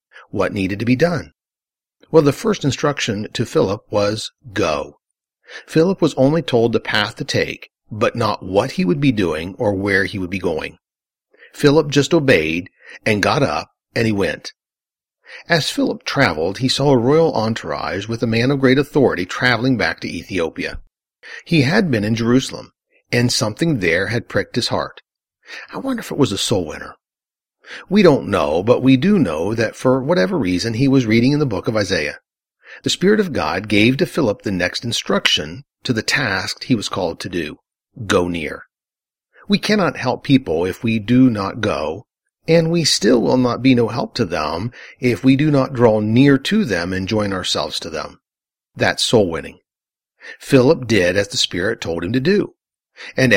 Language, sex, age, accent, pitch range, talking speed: English, male, 50-69, American, 105-145 Hz, 185 wpm